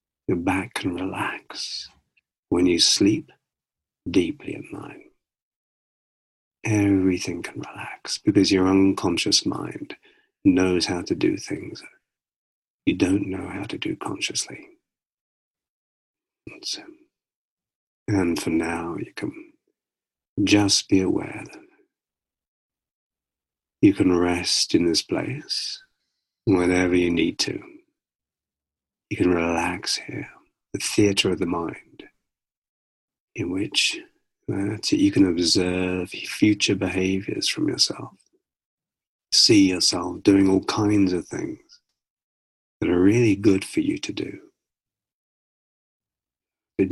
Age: 50-69